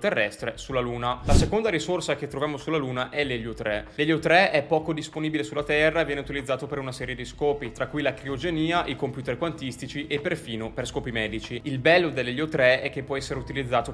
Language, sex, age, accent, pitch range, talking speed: Italian, male, 20-39, native, 120-150 Hz, 210 wpm